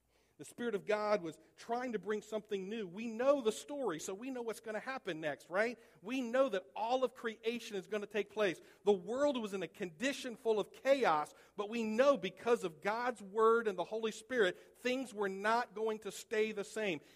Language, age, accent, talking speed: English, 50-69, American, 215 wpm